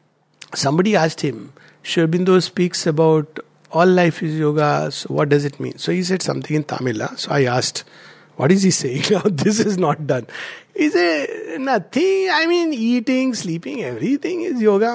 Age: 60-79